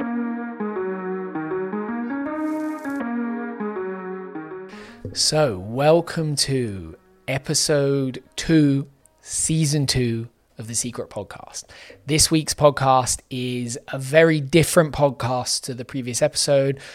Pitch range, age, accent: 115-140 Hz, 20-39, British